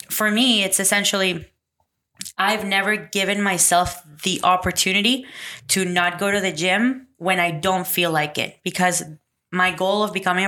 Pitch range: 175-200 Hz